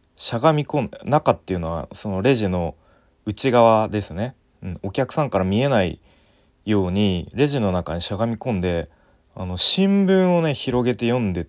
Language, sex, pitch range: Japanese, male, 90-125 Hz